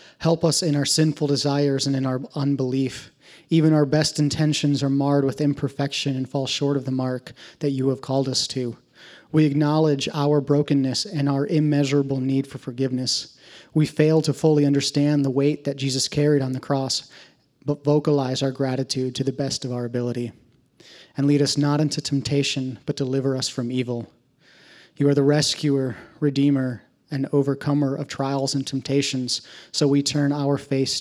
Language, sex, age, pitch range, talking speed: English, male, 30-49, 130-145 Hz, 175 wpm